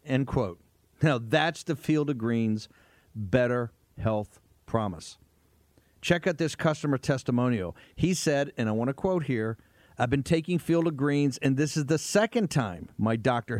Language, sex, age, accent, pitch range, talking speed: English, male, 50-69, American, 115-155 Hz, 170 wpm